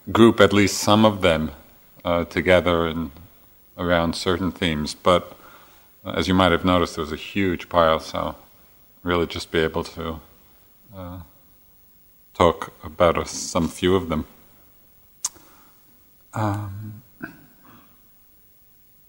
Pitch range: 85-100 Hz